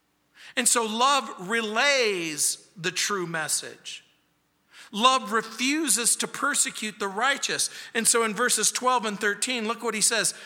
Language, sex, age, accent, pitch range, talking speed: English, male, 50-69, American, 165-235 Hz, 140 wpm